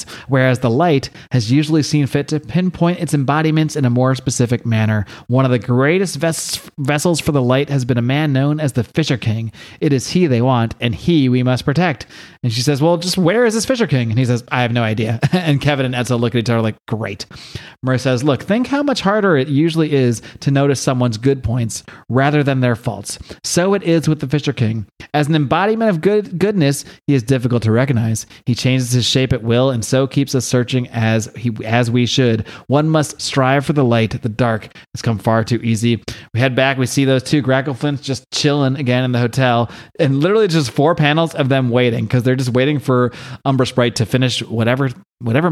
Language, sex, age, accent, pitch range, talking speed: English, male, 30-49, American, 120-150 Hz, 220 wpm